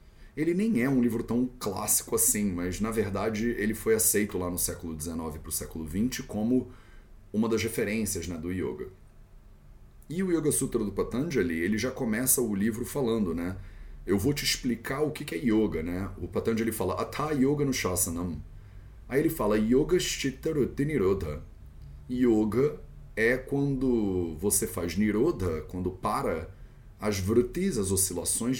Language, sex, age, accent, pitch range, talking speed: English, male, 30-49, Brazilian, 90-130 Hz, 160 wpm